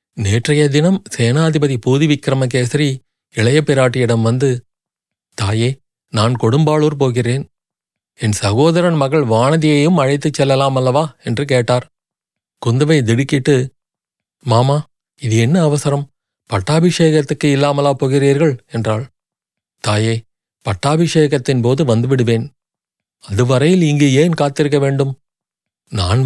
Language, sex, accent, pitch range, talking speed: Tamil, male, native, 125-160 Hz, 90 wpm